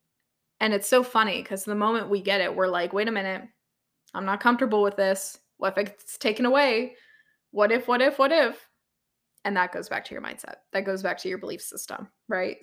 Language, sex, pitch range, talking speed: English, female, 195-245 Hz, 220 wpm